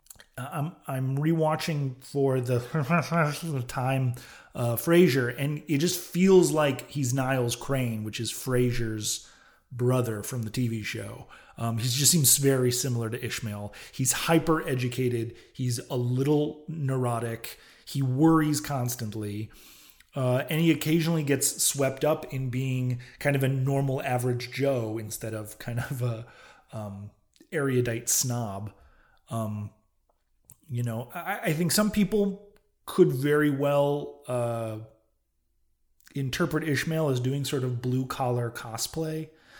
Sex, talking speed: male, 125 wpm